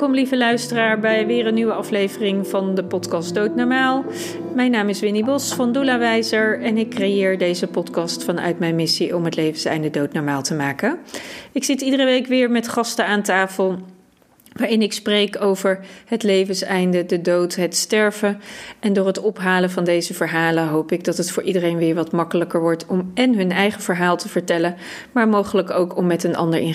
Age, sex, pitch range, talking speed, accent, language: 40-59, female, 180-235 Hz, 190 wpm, Dutch, Dutch